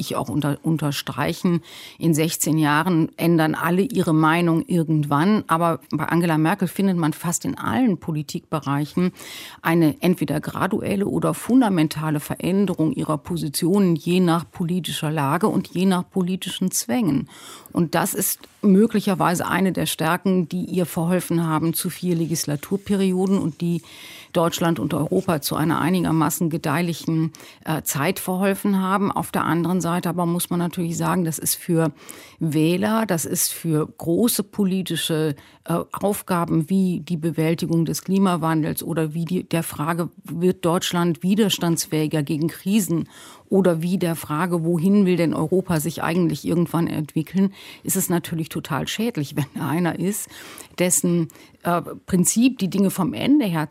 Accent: German